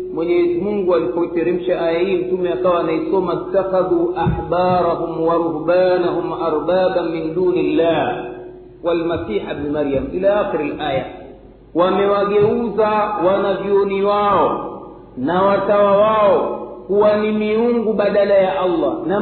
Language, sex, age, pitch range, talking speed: Swahili, male, 50-69, 180-230 Hz, 110 wpm